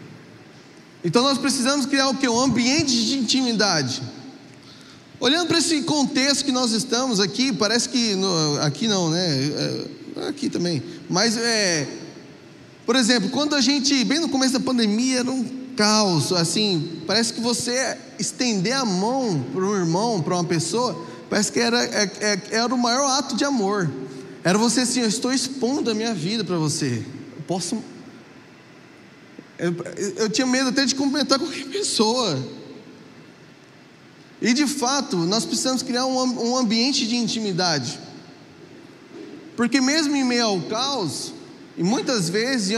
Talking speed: 145 wpm